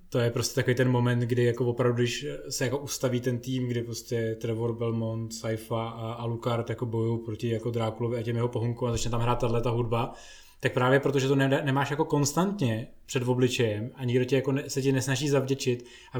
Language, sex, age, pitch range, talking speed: Czech, male, 20-39, 120-135 Hz, 210 wpm